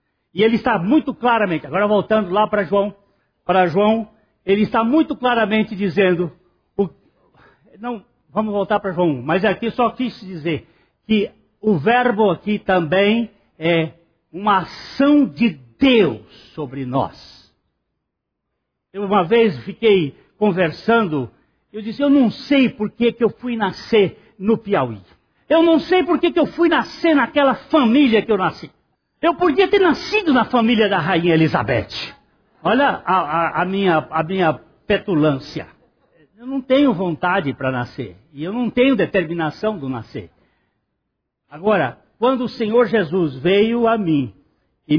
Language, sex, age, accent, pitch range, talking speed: Portuguese, male, 60-79, Brazilian, 165-235 Hz, 140 wpm